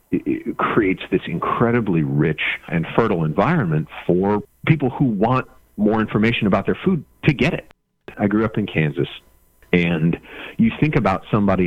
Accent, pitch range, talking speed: American, 80-115 Hz, 155 wpm